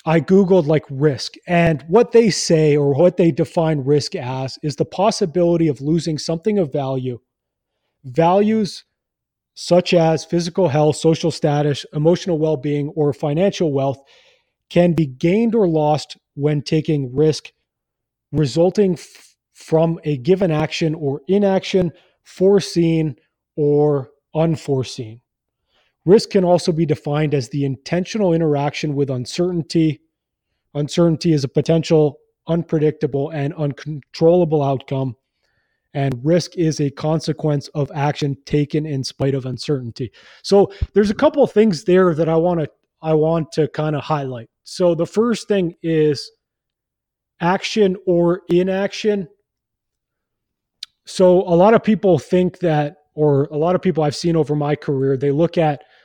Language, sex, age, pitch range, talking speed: English, male, 30-49, 145-180 Hz, 135 wpm